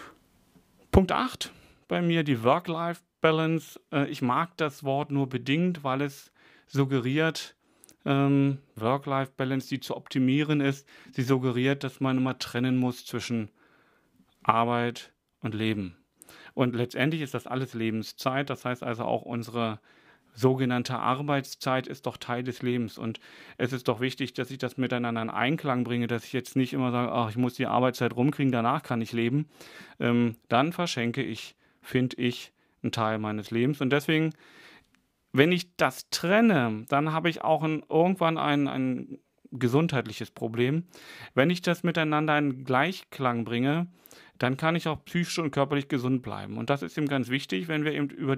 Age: 40-59